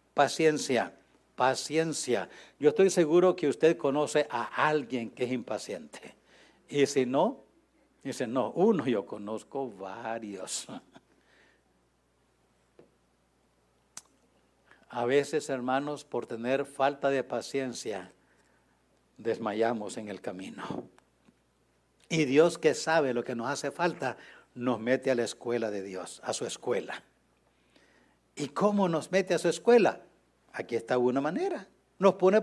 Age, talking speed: 60-79, 120 wpm